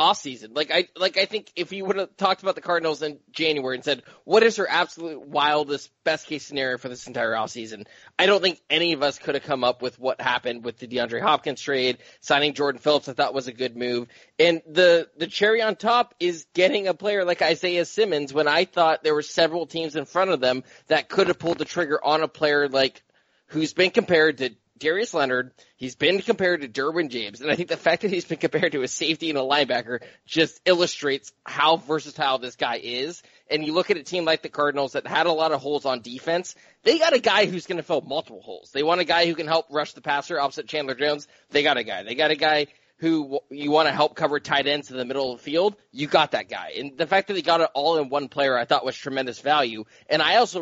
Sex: male